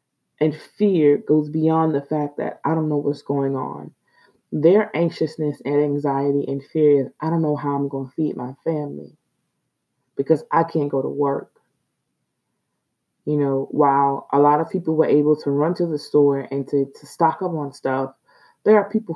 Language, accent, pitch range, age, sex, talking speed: English, American, 145-180 Hz, 20-39, female, 190 wpm